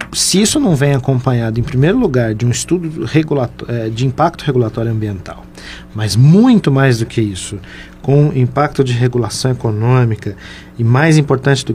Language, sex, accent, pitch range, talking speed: Portuguese, male, Brazilian, 115-140 Hz, 155 wpm